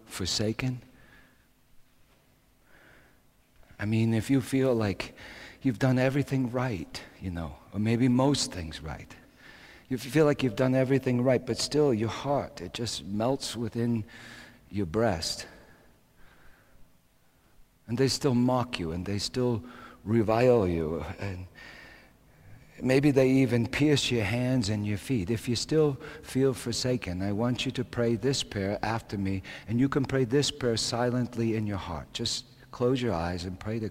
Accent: American